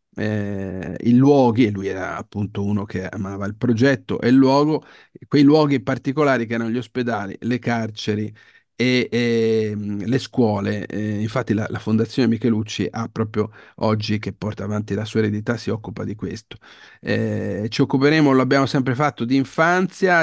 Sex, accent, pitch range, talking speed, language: male, native, 110-135 Hz, 165 wpm, Italian